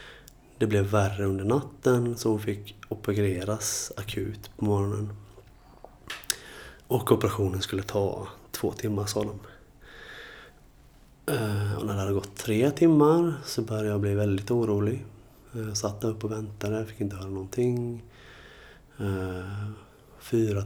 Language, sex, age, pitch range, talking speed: Swedish, male, 20-39, 100-110 Hz, 125 wpm